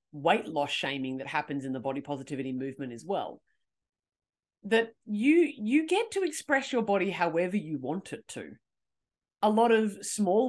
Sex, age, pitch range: female, 30-49, 180-250 Hz